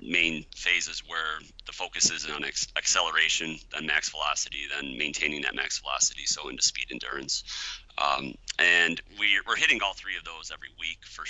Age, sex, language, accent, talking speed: 30-49, male, English, American, 170 wpm